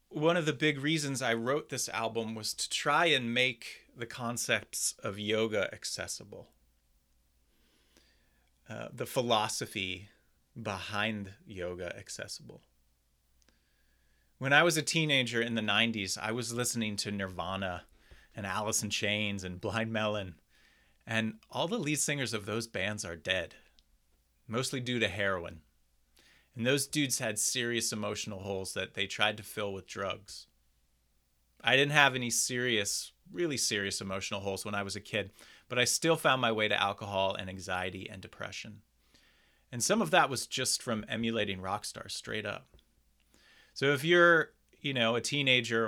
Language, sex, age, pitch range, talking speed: English, male, 30-49, 95-125 Hz, 155 wpm